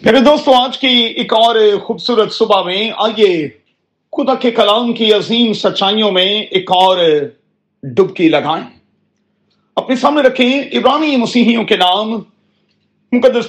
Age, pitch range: 40-59, 195-235 Hz